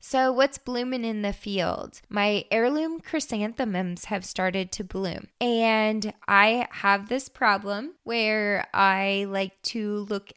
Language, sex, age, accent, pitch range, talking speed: English, female, 20-39, American, 190-240 Hz, 135 wpm